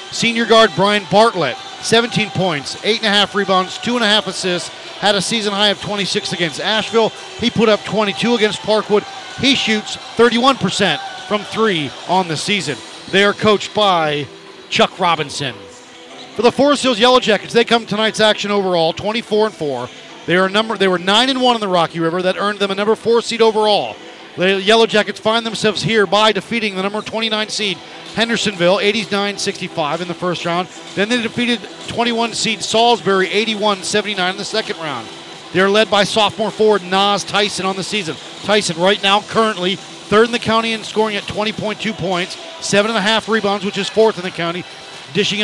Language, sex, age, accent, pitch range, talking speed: English, male, 40-59, American, 185-220 Hz, 190 wpm